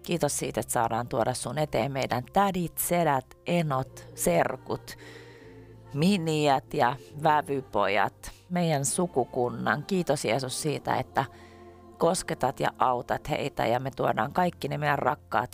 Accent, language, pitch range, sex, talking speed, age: native, Finnish, 115-155 Hz, female, 125 wpm, 30-49